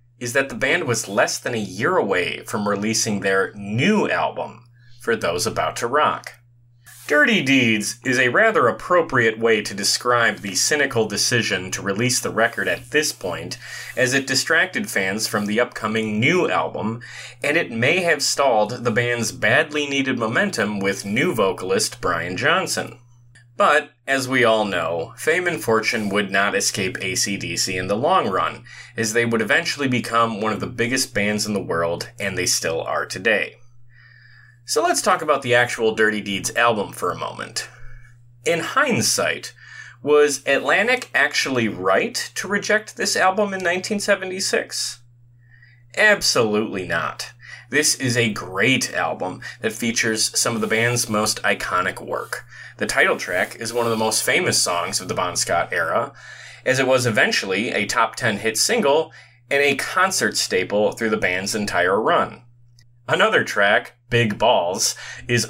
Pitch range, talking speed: 110-130 Hz, 160 wpm